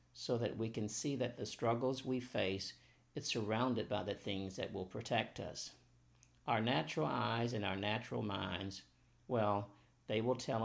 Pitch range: 100-120 Hz